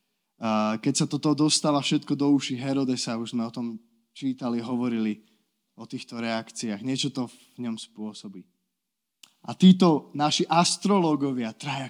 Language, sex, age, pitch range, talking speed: Slovak, male, 20-39, 130-190 Hz, 130 wpm